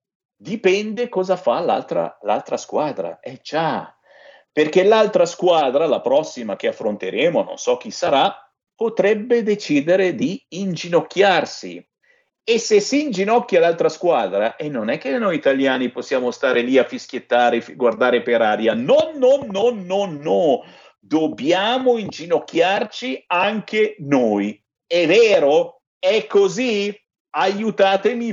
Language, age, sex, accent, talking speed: Italian, 50-69, male, native, 125 wpm